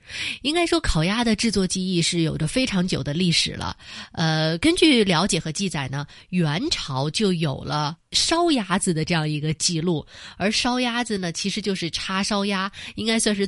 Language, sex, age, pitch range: Chinese, female, 20-39, 160-220 Hz